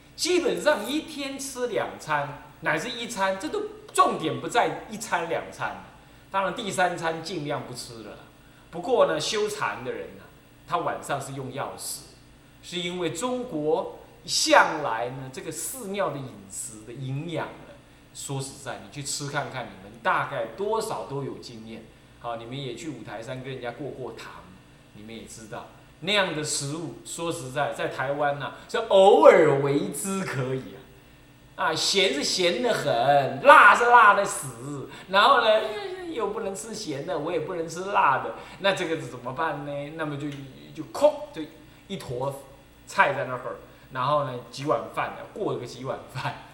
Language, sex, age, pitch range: Chinese, male, 20-39, 135-195 Hz